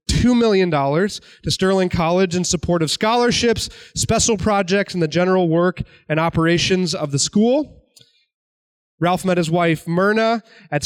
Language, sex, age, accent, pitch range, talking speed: English, male, 20-39, American, 150-185 Hz, 140 wpm